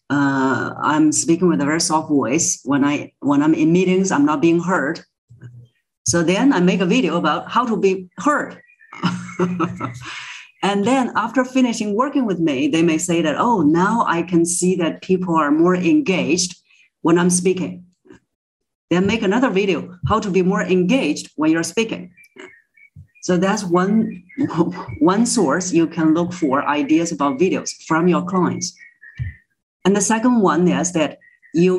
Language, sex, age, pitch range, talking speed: English, female, 40-59, 165-205 Hz, 165 wpm